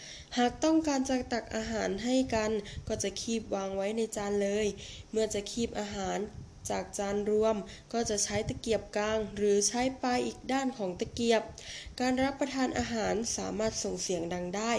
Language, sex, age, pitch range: Thai, female, 10-29, 195-235 Hz